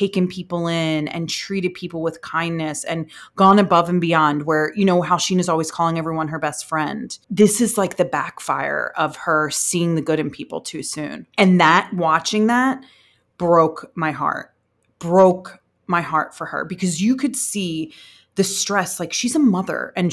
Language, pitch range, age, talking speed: English, 165-240 Hz, 30-49, 185 wpm